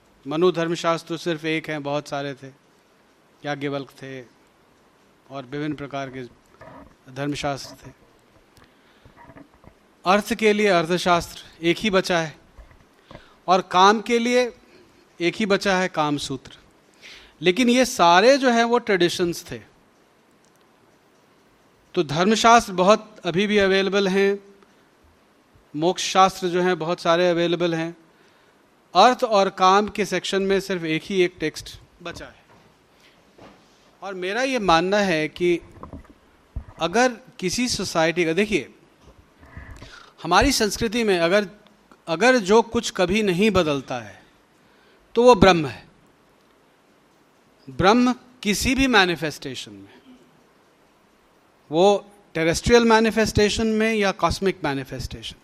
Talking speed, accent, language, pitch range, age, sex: 115 wpm, Indian, English, 155-205 Hz, 30-49, male